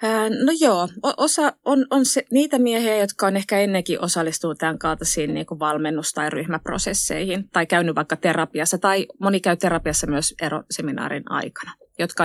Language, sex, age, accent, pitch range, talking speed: Finnish, female, 20-39, native, 155-190 Hz, 150 wpm